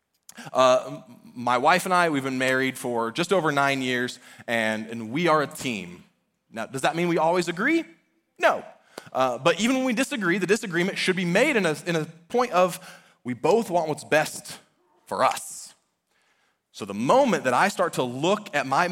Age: 20-39